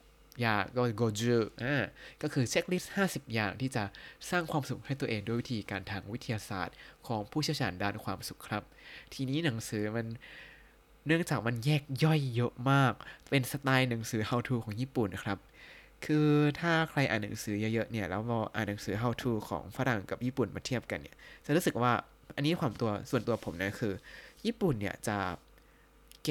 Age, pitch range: 20-39, 110-140 Hz